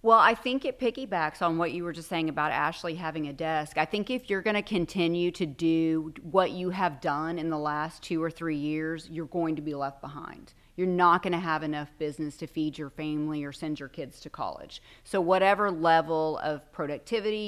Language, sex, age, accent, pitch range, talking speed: English, female, 30-49, American, 150-175 Hz, 220 wpm